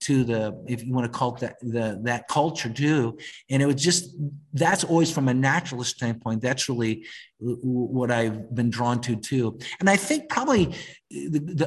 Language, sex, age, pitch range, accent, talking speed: English, male, 50-69, 120-155 Hz, American, 185 wpm